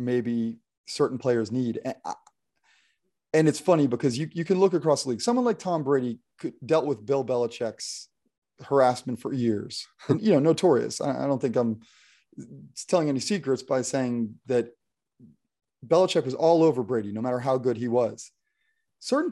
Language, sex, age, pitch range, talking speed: English, male, 30-49, 125-170 Hz, 170 wpm